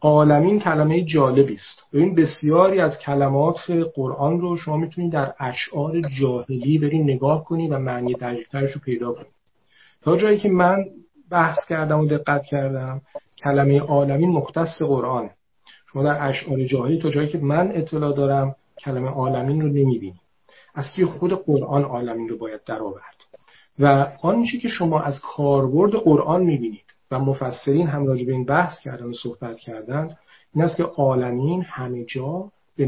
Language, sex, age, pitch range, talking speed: Persian, male, 40-59, 130-165 Hz, 155 wpm